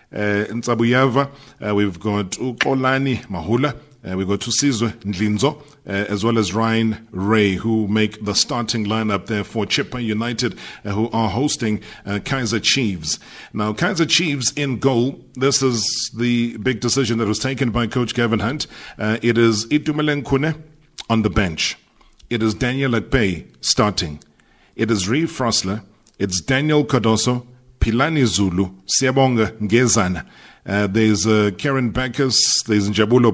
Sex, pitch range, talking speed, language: male, 105-130 Hz, 145 wpm, English